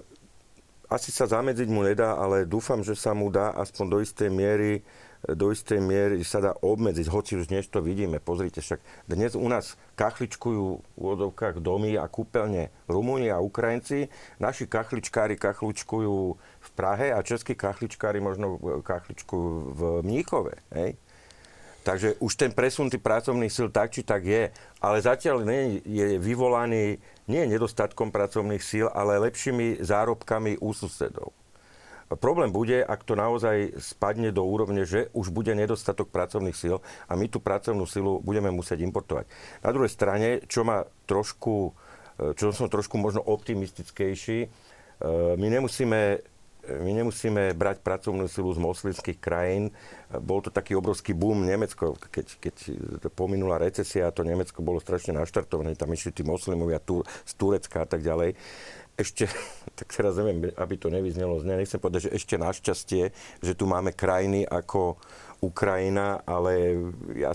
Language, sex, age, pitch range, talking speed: Slovak, male, 50-69, 95-110 Hz, 150 wpm